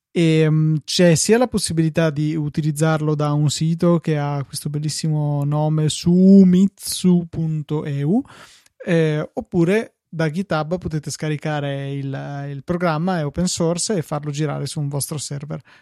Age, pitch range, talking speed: 20-39, 145-170 Hz, 135 wpm